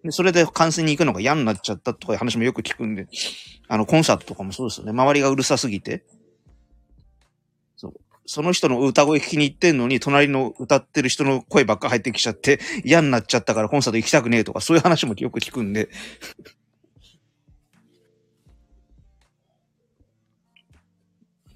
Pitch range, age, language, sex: 110-170 Hz, 40-59, Japanese, male